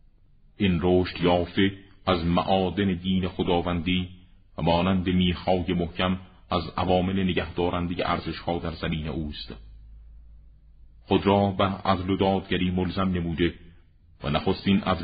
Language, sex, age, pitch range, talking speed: Persian, male, 40-59, 80-90 Hz, 115 wpm